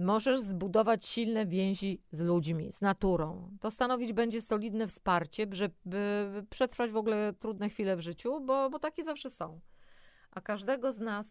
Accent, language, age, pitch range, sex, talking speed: native, Polish, 30-49, 180-225 Hz, female, 160 wpm